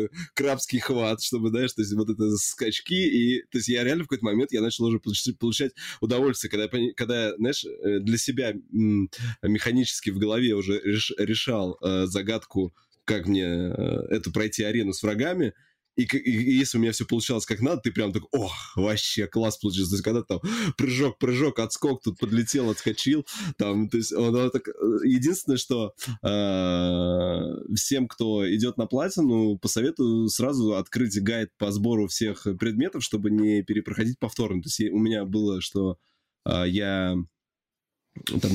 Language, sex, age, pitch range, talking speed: Russian, male, 20-39, 100-120 Hz, 160 wpm